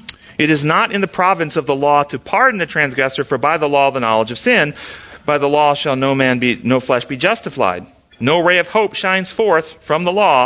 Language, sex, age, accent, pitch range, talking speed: English, male, 40-59, American, 145-205 Hz, 235 wpm